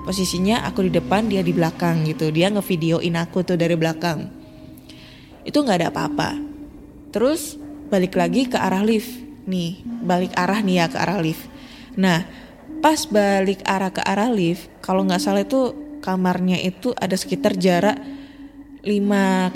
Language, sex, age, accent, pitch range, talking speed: Indonesian, female, 20-39, native, 180-240 Hz, 150 wpm